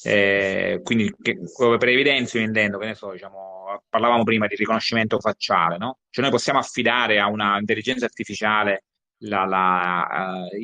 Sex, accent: male, native